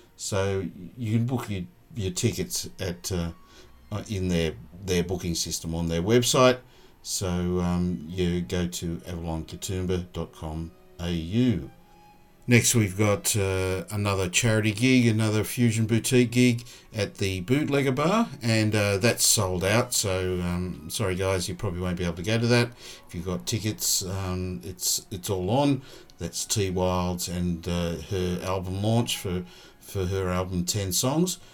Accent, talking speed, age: Australian, 150 wpm, 50-69